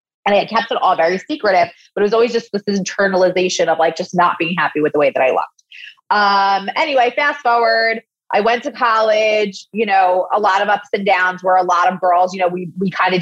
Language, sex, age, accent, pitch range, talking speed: English, female, 30-49, American, 180-225 Hz, 235 wpm